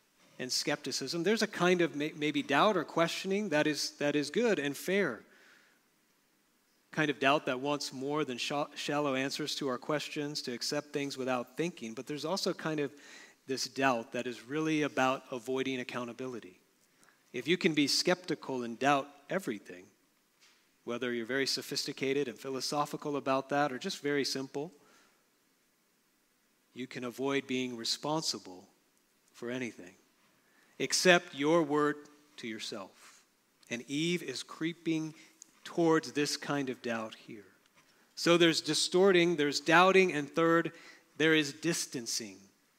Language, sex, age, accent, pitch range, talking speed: English, male, 40-59, American, 135-170 Hz, 140 wpm